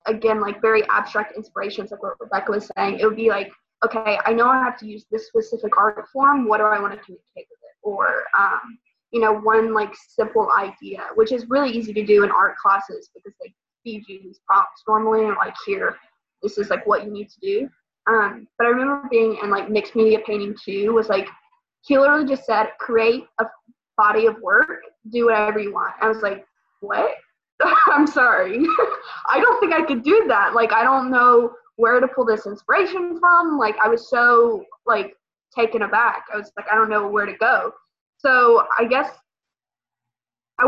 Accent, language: American, English